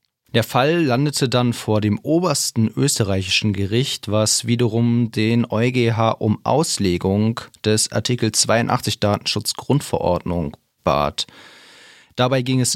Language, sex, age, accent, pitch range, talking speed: German, male, 30-49, German, 100-125 Hz, 110 wpm